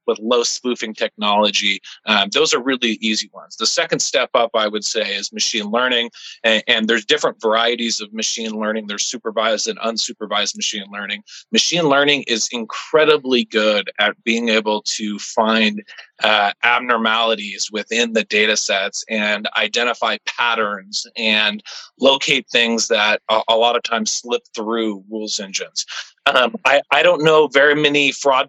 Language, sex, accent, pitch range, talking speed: English, male, American, 110-125 Hz, 155 wpm